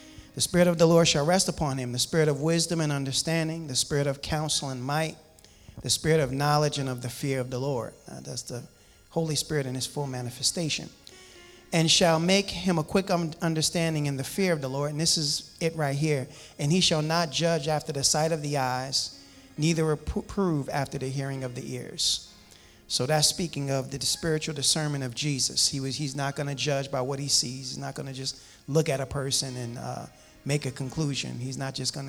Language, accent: English, American